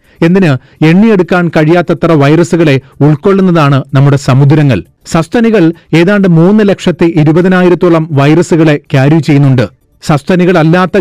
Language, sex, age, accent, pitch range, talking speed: Malayalam, male, 30-49, native, 140-175 Hz, 85 wpm